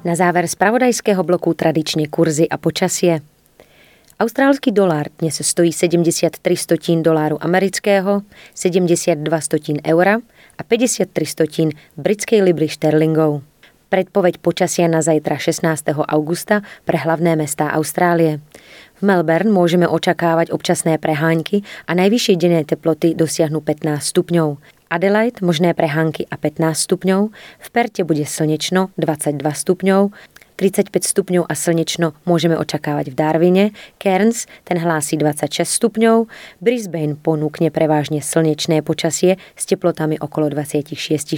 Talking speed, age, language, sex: 120 wpm, 20-39, Slovak, female